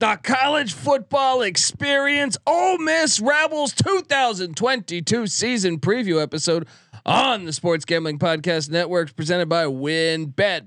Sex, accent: male, American